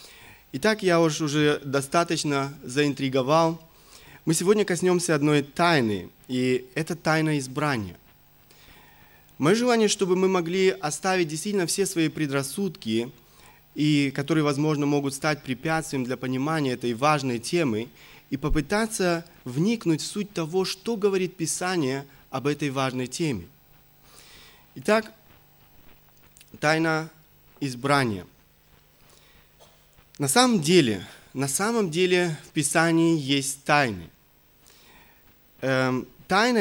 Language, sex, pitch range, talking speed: Russian, male, 140-185 Hz, 100 wpm